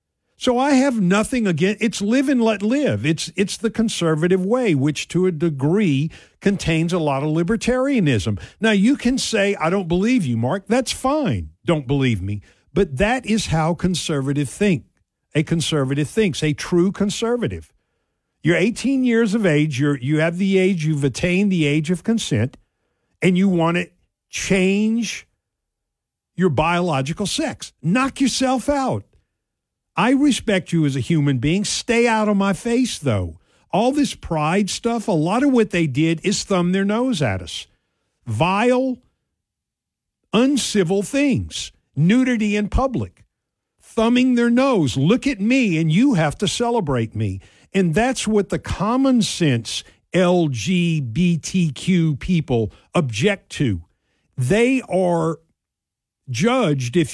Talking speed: 145 wpm